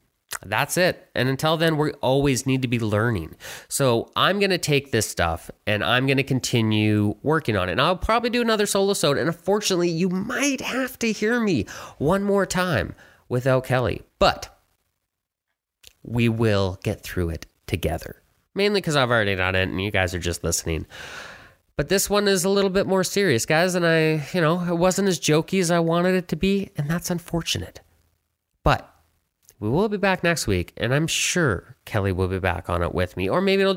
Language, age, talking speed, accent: English, 30-49, 195 wpm, American